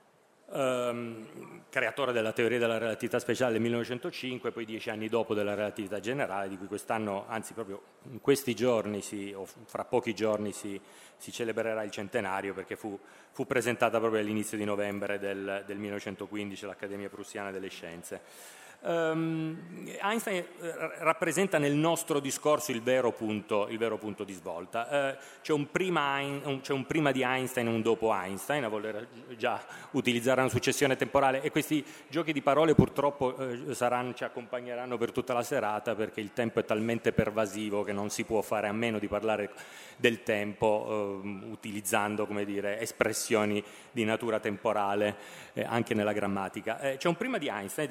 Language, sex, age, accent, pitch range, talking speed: Italian, male, 30-49, native, 105-135 Hz, 155 wpm